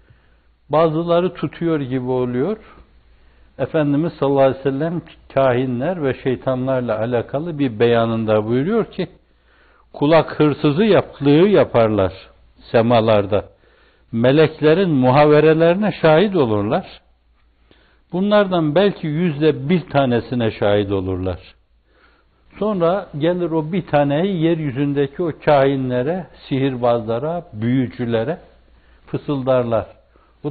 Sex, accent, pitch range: male, native, 110-160 Hz